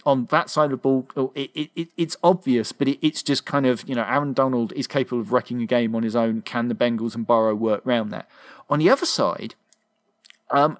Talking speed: 240 wpm